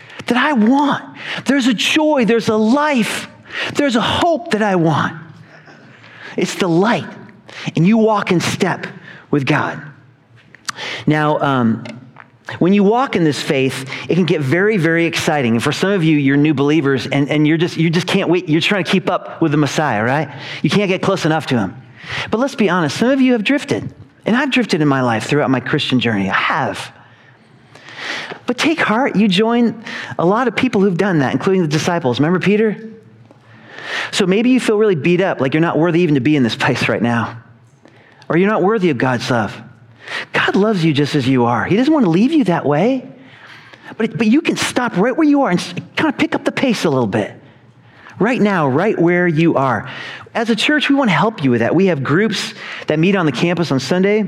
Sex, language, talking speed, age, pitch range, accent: male, English, 220 wpm, 40-59, 145-220 Hz, American